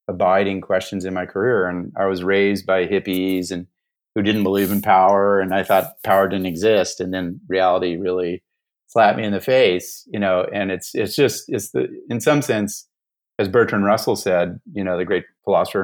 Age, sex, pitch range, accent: 40-59, male, 95-115 Hz, American